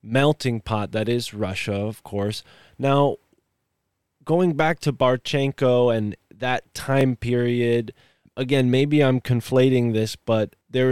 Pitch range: 105-130 Hz